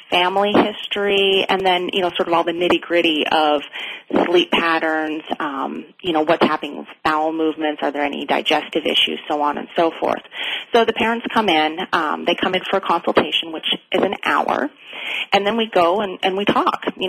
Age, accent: 30-49, American